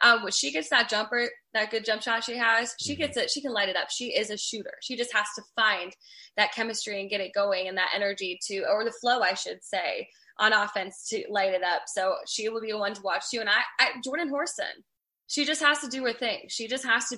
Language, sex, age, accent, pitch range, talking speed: English, female, 20-39, American, 200-255 Hz, 265 wpm